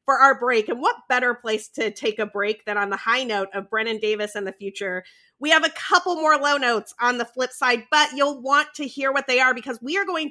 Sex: female